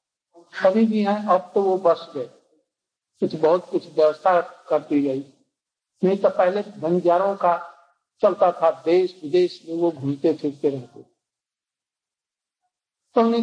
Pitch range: 150-195 Hz